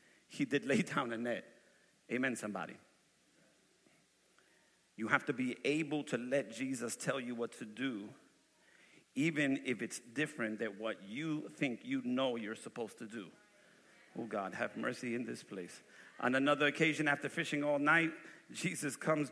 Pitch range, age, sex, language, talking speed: 130-155 Hz, 50-69, male, English, 160 wpm